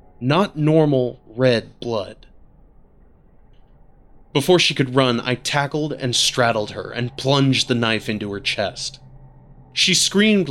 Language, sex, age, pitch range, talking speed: English, male, 20-39, 115-140 Hz, 125 wpm